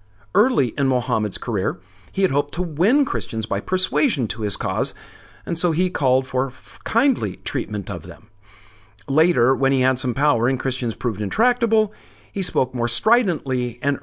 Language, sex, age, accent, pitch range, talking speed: English, male, 50-69, American, 105-145 Hz, 165 wpm